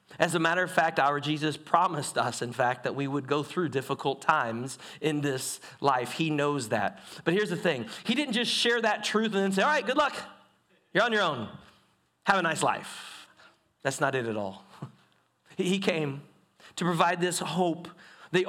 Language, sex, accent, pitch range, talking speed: English, male, American, 135-180 Hz, 200 wpm